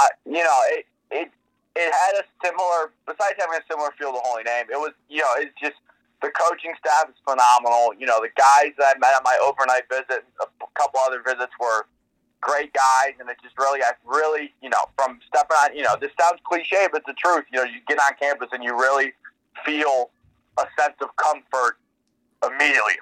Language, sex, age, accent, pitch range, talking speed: English, male, 20-39, American, 130-155 Hz, 215 wpm